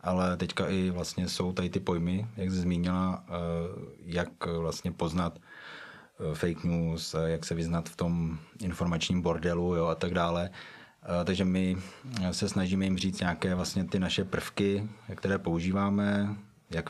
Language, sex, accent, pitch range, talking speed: Czech, male, native, 85-95 Hz, 140 wpm